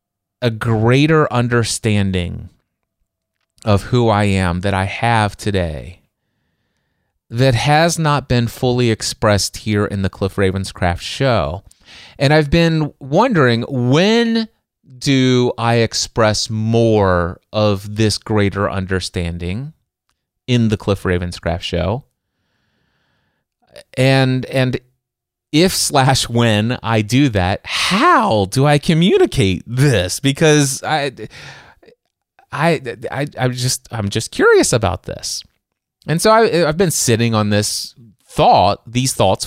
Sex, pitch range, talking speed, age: male, 100-135 Hz, 115 wpm, 30-49